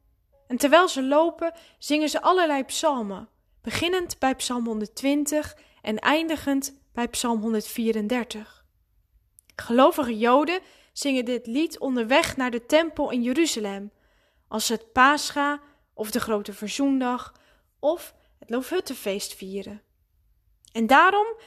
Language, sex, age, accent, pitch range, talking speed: Dutch, female, 10-29, Dutch, 215-295 Hz, 115 wpm